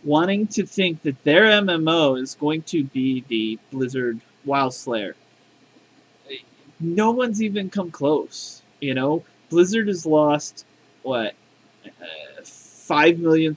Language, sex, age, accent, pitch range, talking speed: English, male, 30-49, American, 145-180 Hz, 130 wpm